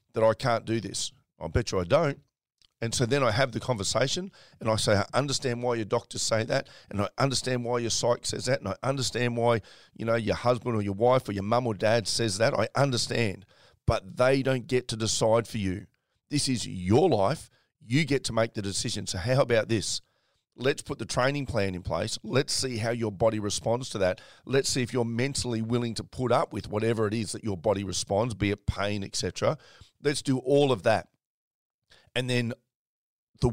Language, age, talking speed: English, 40-59, 215 wpm